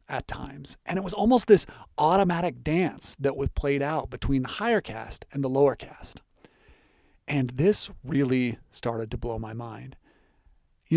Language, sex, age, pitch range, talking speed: English, male, 40-59, 135-195 Hz, 165 wpm